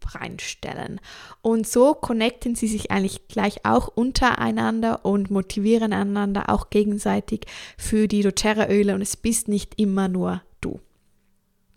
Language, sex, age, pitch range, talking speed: German, female, 20-39, 200-240 Hz, 125 wpm